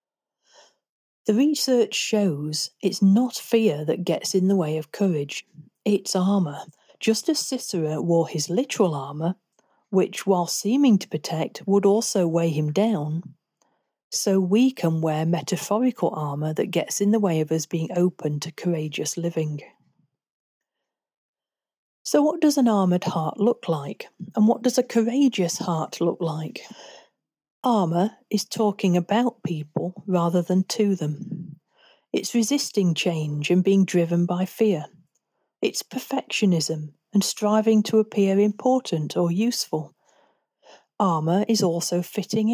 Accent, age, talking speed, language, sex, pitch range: British, 40-59, 135 wpm, English, female, 165-220 Hz